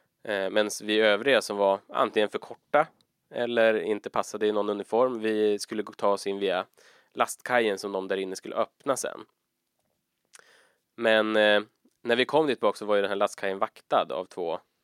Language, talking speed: Swedish, 175 wpm